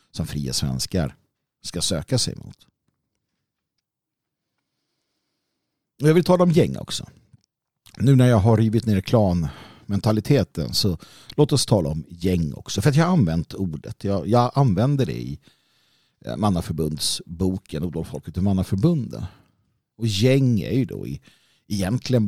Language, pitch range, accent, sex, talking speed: Swedish, 90-125 Hz, native, male, 130 wpm